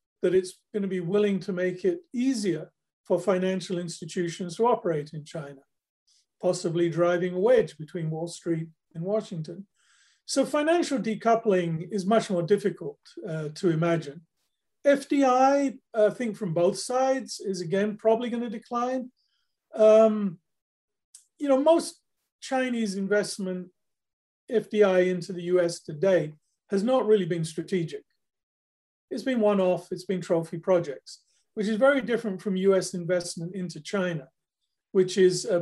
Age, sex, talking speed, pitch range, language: 40-59, male, 135 wpm, 175-225 Hz, English